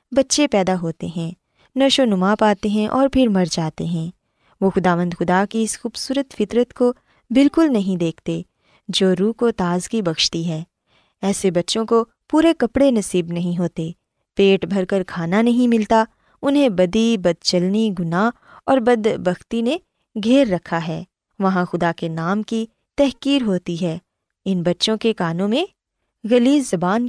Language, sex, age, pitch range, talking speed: Urdu, female, 20-39, 180-245 Hz, 160 wpm